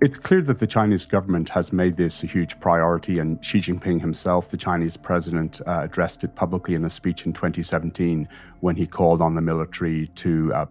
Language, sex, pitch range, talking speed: English, male, 85-100 Hz, 200 wpm